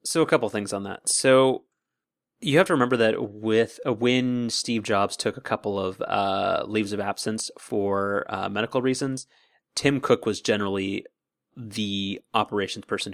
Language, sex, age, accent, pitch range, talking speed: English, male, 30-49, American, 100-115 Hz, 165 wpm